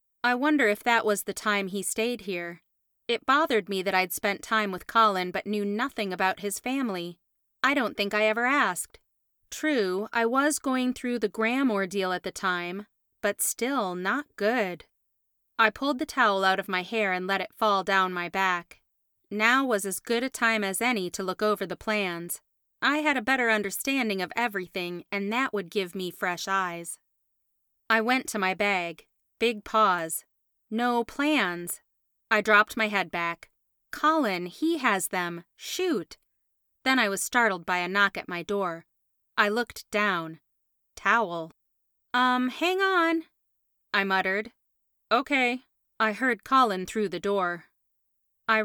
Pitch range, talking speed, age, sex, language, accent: 185-240 Hz, 165 wpm, 30-49, female, English, American